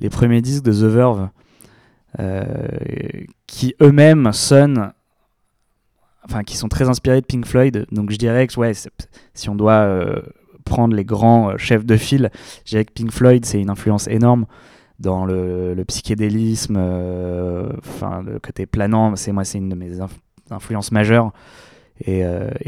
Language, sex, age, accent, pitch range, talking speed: French, male, 20-39, French, 100-125 Hz, 165 wpm